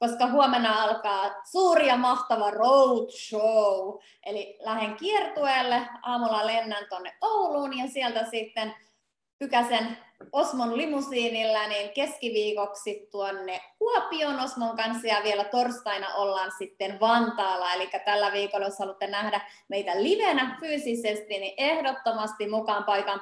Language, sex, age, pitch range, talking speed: Finnish, female, 20-39, 200-250 Hz, 115 wpm